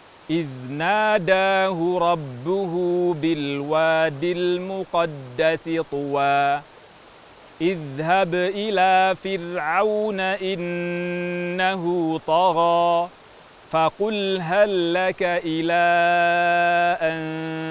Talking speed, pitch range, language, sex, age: 55 wpm, 145-180 Hz, Indonesian, male, 40-59